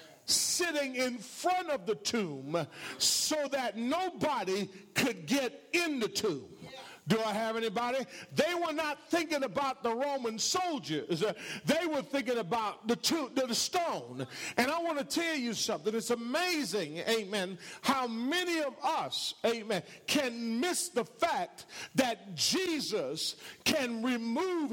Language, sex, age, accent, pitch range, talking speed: English, male, 50-69, American, 205-285 Hz, 140 wpm